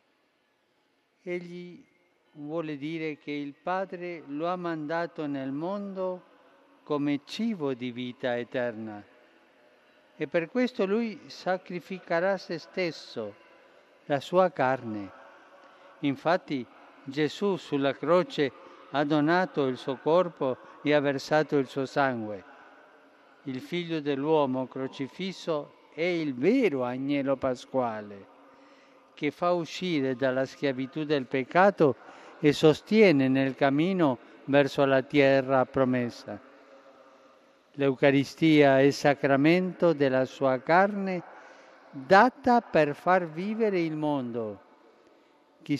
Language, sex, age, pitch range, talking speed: Italian, male, 50-69, 135-175 Hz, 105 wpm